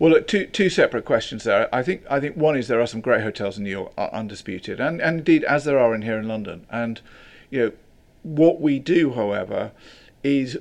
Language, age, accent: English, 50-69, British